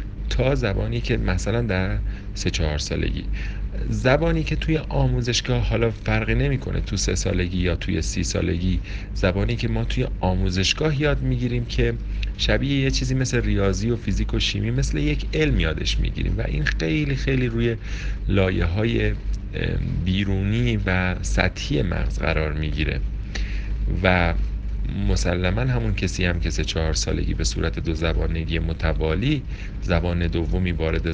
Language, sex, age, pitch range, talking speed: Persian, male, 40-59, 90-115 Hz, 145 wpm